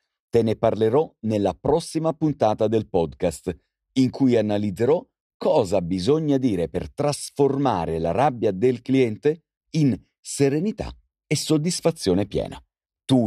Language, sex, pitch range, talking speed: Italian, male, 95-135 Hz, 120 wpm